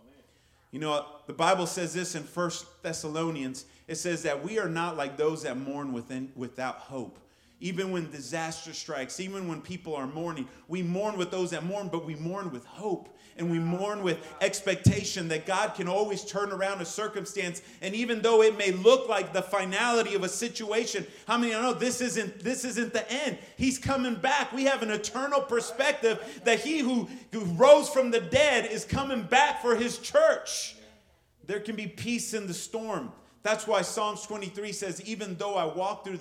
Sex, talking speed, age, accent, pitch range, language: male, 190 wpm, 30-49, American, 155-210 Hz, English